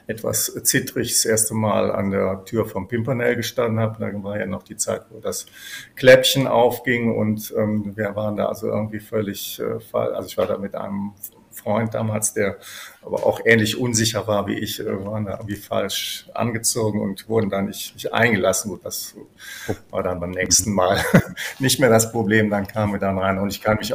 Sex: male